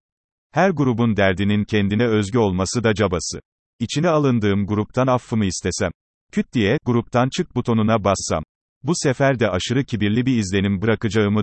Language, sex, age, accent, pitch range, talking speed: Turkish, male, 40-59, native, 100-130 Hz, 140 wpm